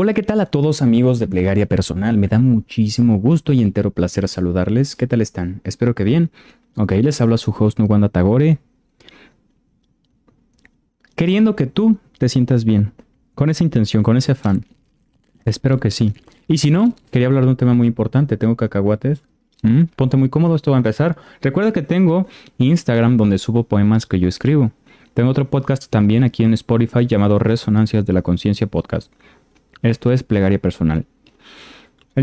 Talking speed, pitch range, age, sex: 175 wpm, 110-145 Hz, 30-49, male